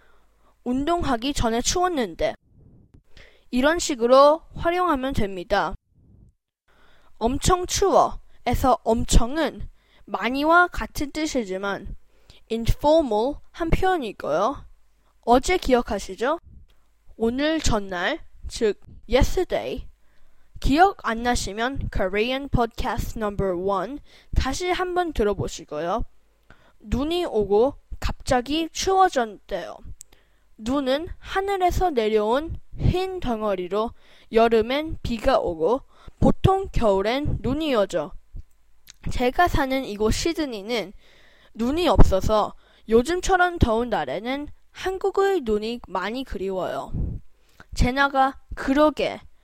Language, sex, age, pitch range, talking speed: English, female, 10-29, 225-340 Hz, 75 wpm